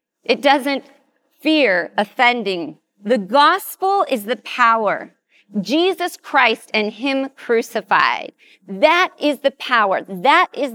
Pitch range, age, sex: 200-255 Hz, 40-59, female